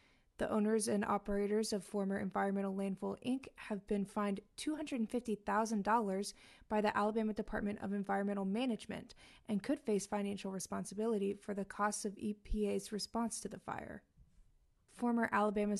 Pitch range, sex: 200-225 Hz, female